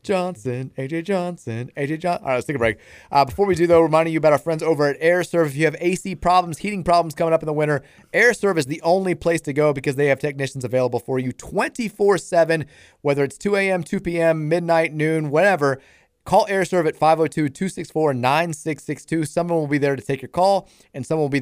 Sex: male